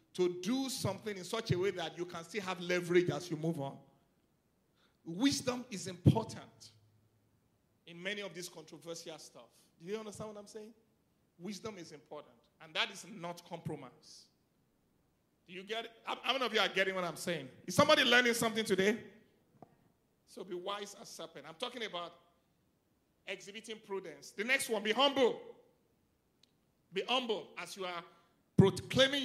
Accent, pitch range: Nigerian, 175-235 Hz